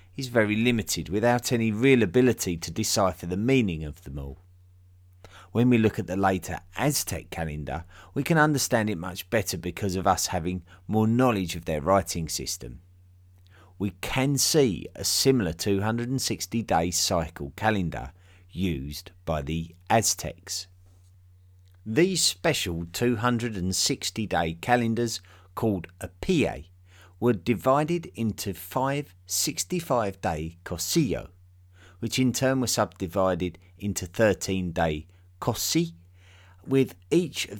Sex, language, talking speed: male, English, 120 wpm